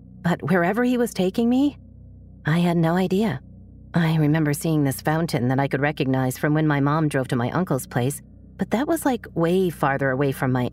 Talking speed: 205 wpm